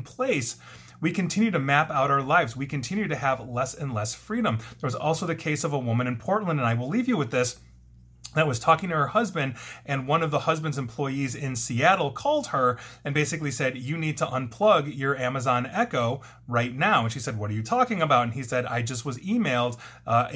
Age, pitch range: 30-49, 120-155 Hz